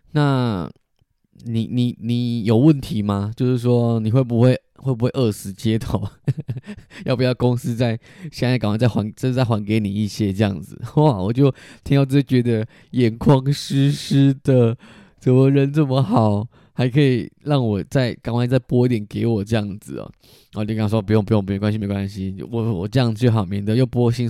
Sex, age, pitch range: male, 20-39, 110-130 Hz